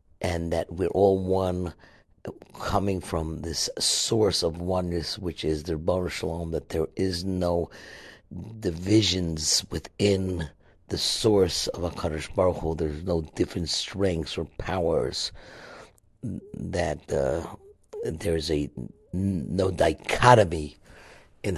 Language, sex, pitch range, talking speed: English, male, 80-95 Hz, 115 wpm